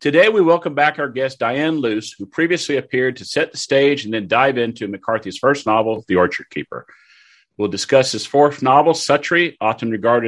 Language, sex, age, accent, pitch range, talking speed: English, male, 50-69, American, 110-140 Hz, 195 wpm